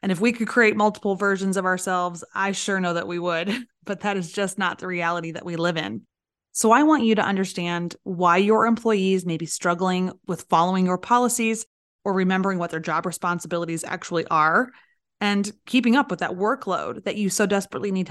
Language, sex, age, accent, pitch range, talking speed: English, female, 20-39, American, 180-220 Hz, 200 wpm